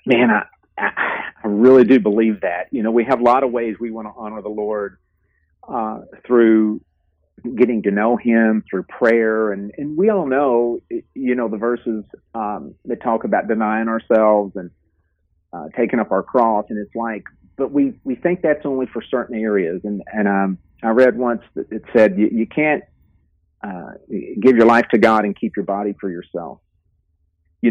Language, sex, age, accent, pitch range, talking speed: English, male, 40-59, American, 105-130 Hz, 190 wpm